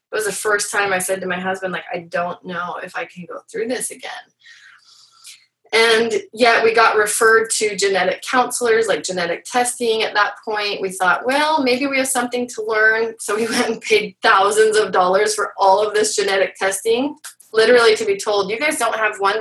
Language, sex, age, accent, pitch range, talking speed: English, female, 20-39, American, 195-250 Hz, 205 wpm